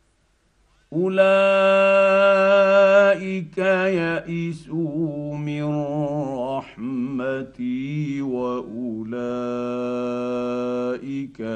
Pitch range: 130-155 Hz